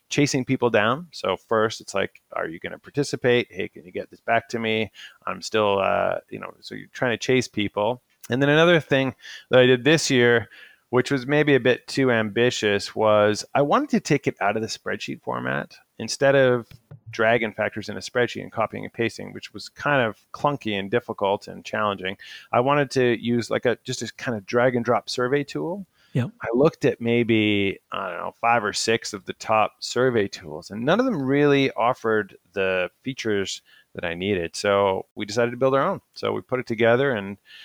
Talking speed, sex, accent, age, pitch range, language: 210 wpm, male, American, 30-49, 105-130 Hz, English